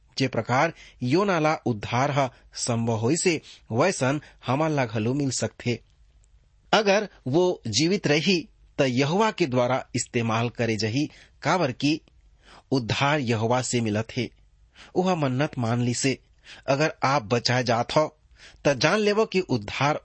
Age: 30-49